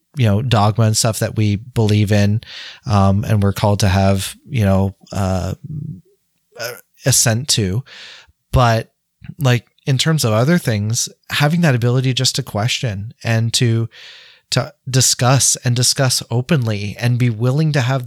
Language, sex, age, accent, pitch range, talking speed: English, male, 30-49, American, 110-135 Hz, 155 wpm